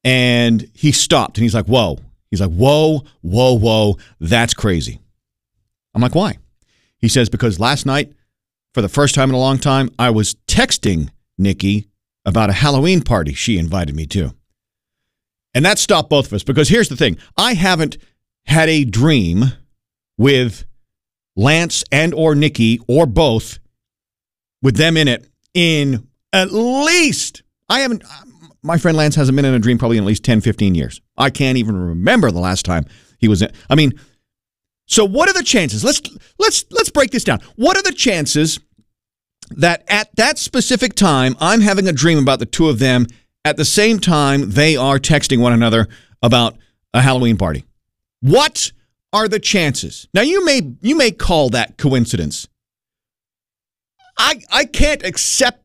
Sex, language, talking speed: male, English, 170 wpm